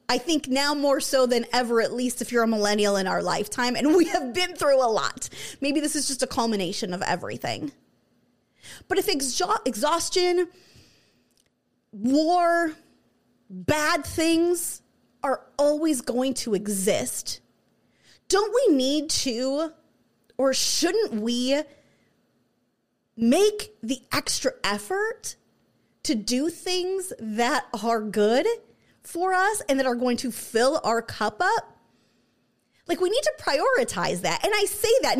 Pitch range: 235-350 Hz